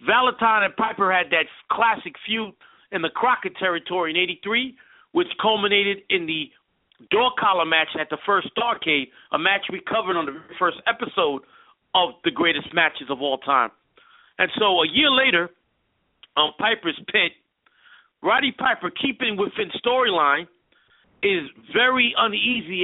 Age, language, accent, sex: 40-59, English, American, male